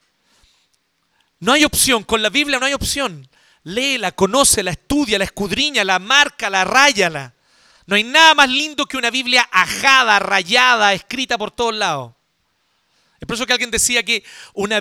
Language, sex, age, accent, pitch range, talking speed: Spanish, male, 40-59, Mexican, 190-260 Hz, 165 wpm